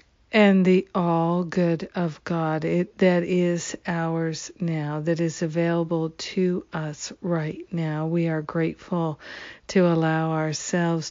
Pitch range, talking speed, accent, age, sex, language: 160-180 Hz, 125 wpm, American, 50-69, female, English